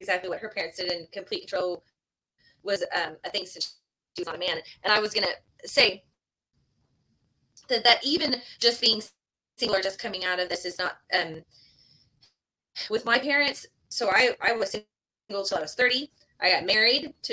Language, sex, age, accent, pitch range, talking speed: English, female, 20-39, American, 180-250 Hz, 190 wpm